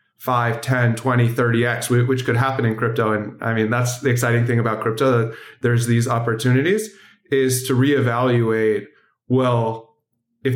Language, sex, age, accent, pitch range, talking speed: English, male, 30-49, American, 115-130 Hz, 155 wpm